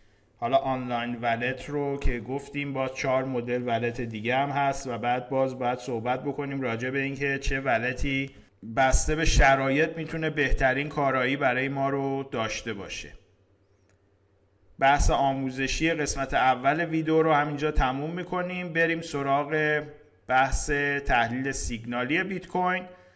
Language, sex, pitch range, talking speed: Persian, male, 120-145 Hz, 130 wpm